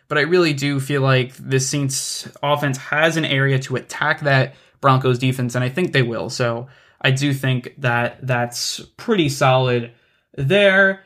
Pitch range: 130-160 Hz